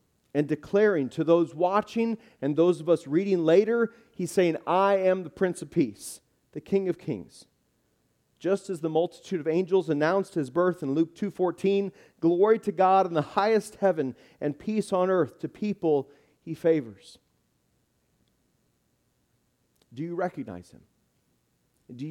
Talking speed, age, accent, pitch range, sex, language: 150 wpm, 40-59, American, 150-185 Hz, male, English